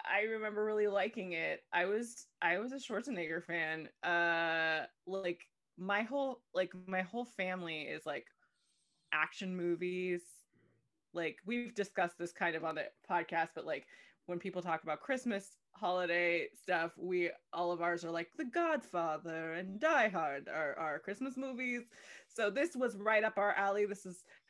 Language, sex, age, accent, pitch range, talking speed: English, female, 20-39, American, 170-215 Hz, 160 wpm